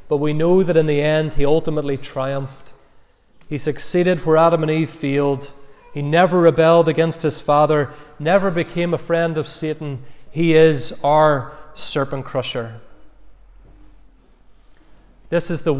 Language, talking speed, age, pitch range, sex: English, 140 wpm, 30-49, 140-170 Hz, male